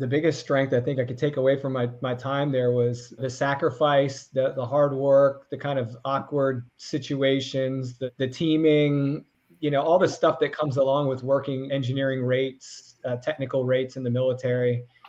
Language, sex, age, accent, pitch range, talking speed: English, male, 30-49, American, 130-145 Hz, 185 wpm